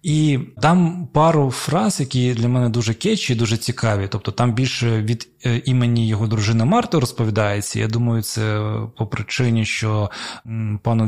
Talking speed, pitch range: 145 wpm, 105-125 Hz